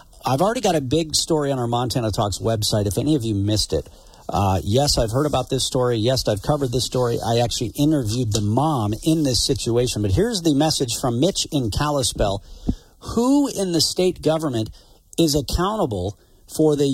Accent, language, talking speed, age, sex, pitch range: American, English, 190 wpm, 50-69, male, 115-160 Hz